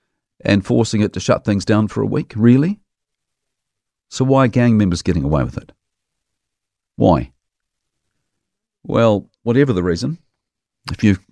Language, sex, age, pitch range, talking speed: English, male, 50-69, 110-140 Hz, 145 wpm